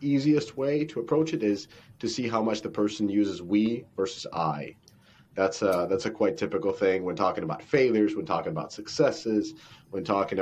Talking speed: 190 wpm